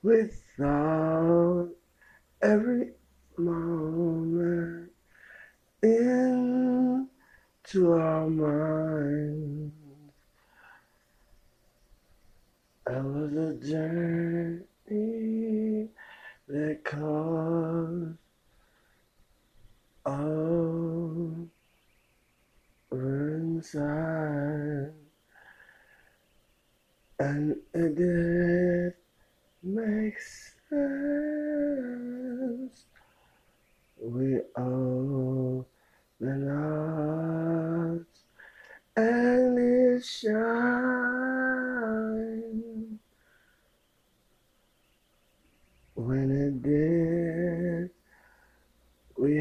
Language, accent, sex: English, American, male